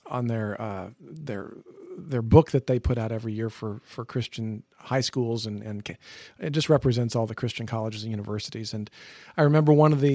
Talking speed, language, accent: 200 wpm, English, American